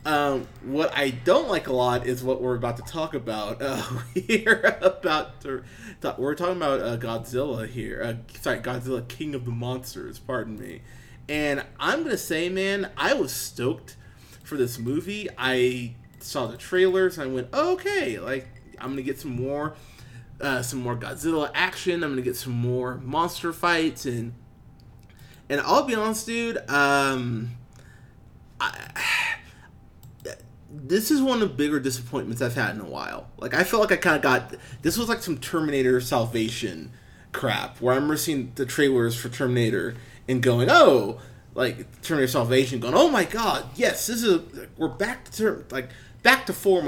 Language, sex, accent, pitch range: English, male, American, 120-155 Hz